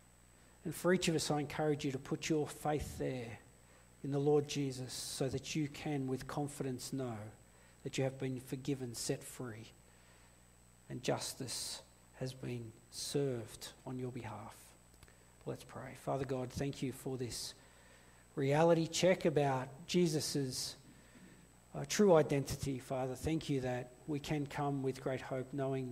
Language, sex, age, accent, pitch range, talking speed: English, male, 50-69, Australian, 100-145 Hz, 150 wpm